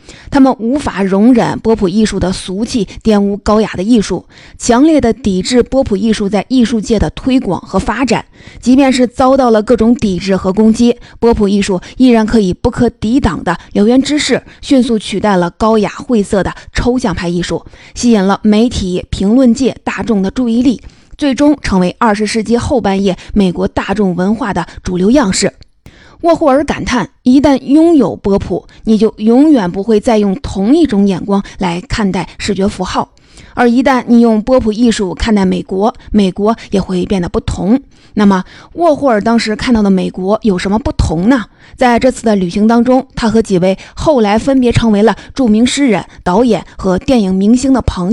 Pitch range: 195-250 Hz